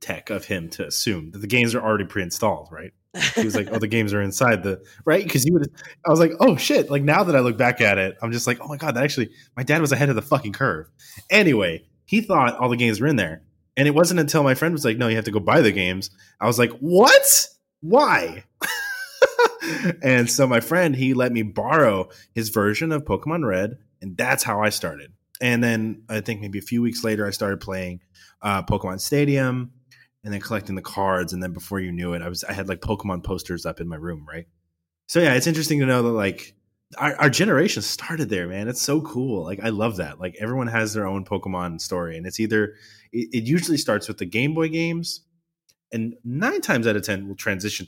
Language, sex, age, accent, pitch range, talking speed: English, male, 20-39, American, 95-145 Hz, 235 wpm